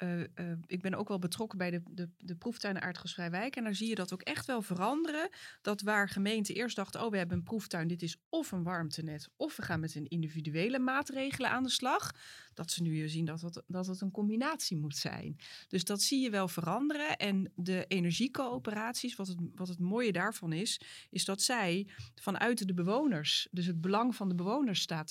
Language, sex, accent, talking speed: Dutch, female, Dutch, 205 wpm